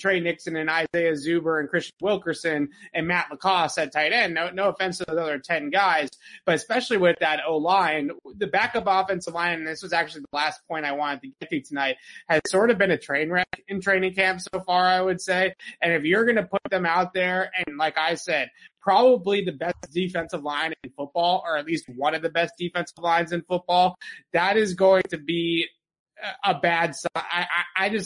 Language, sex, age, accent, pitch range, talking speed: English, male, 20-39, American, 150-185 Hz, 215 wpm